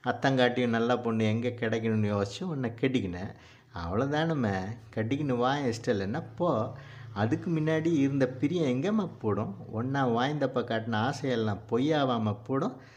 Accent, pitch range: native, 110-130 Hz